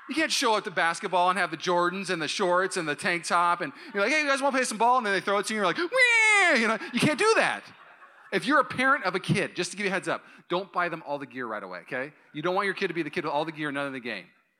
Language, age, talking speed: English, 30-49, 350 wpm